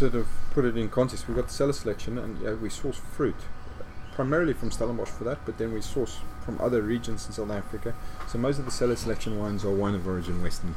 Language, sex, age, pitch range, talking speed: English, male, 30-49, 95-110 Hz, 235 wpm